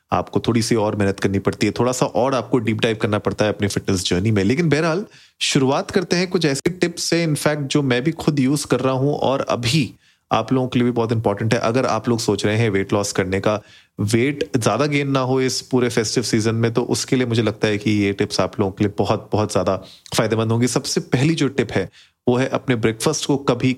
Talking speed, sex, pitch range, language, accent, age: 245 wpm, male, 105-130 Hz, Hindi, native, 30-49